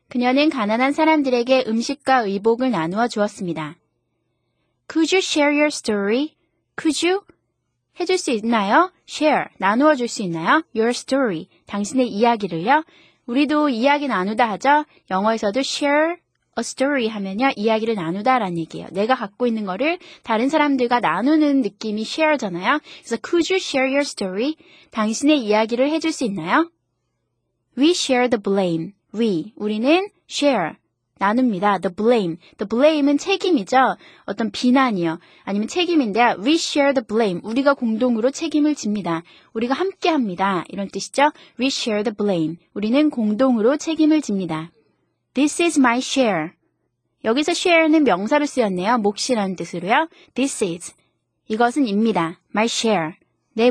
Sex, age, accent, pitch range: female, 20-39, native, 200-290 Hz